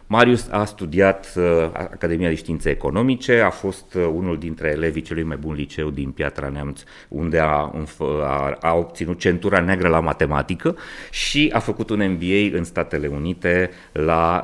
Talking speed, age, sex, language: 160 wpm, 30-49, male, Romanian